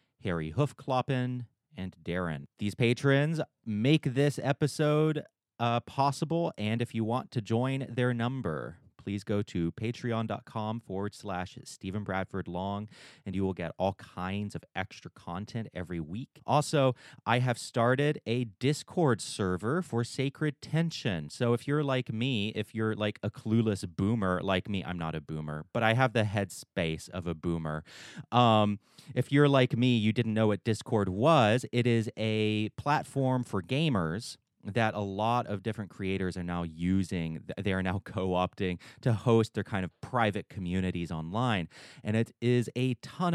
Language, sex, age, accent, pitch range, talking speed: English, male, 30-49, American, 95-125 Hz, 160 wpm